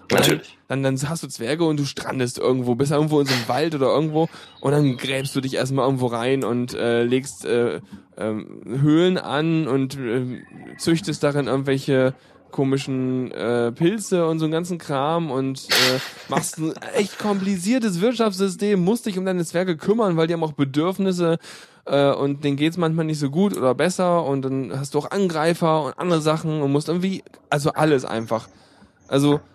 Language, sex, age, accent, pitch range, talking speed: German, male, 10-29, German, 135-180 Hz, 185 wpm